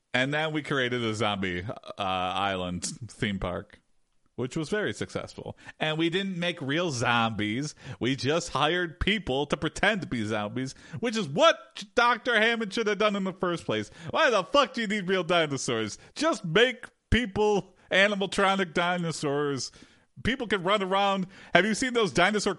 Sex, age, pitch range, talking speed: male, 40-59, 125-200 Hz, 165 wpm